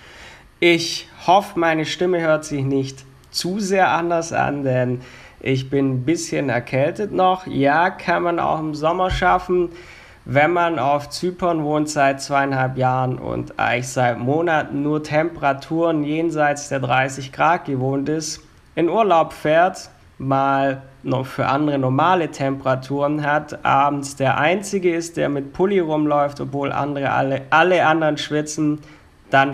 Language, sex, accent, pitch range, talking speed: German, male, German, 130-165 Hz, 140 wpm